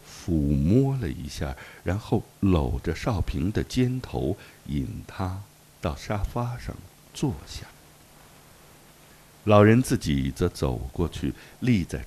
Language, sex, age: Chinese, male, 60-79